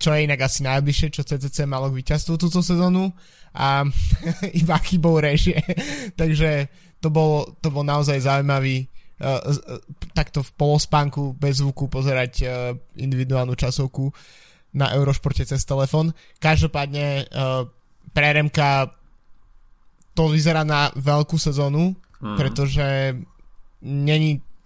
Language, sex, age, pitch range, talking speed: Slovak, male, 20-39, 130-155 Hz, 115 wpm